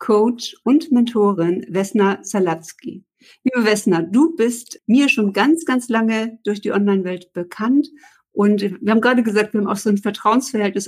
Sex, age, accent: female, 60-79, German